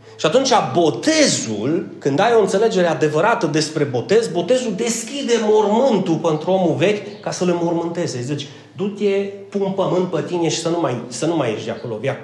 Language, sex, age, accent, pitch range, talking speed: Romanian, male, 30-49, native, 135-185 Hz, 165 wpm